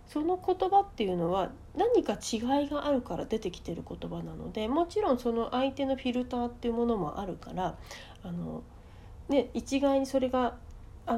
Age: 40-59